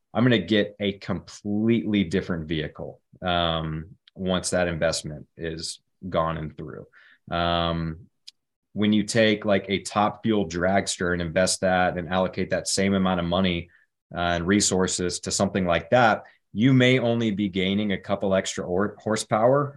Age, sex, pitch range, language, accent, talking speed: 30-49, male, 85-100 Hz, English, American, 155 wpm